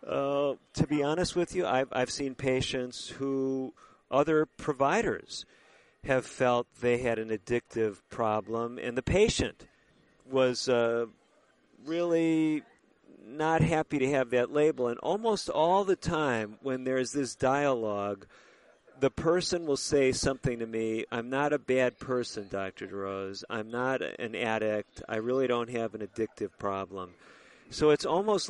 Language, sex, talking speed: English, male, 145 wpm